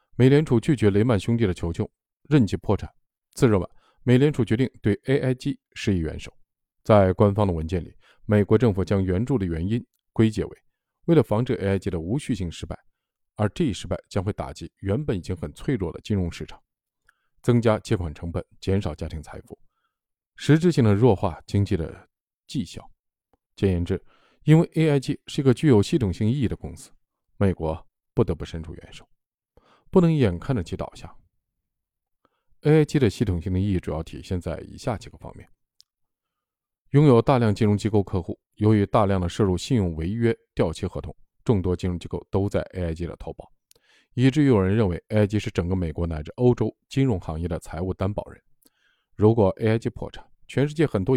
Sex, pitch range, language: male, 90-120 Hz, Chinese